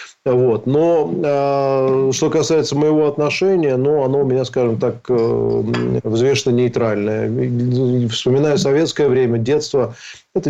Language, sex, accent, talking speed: Russian, male, native, 115 wpm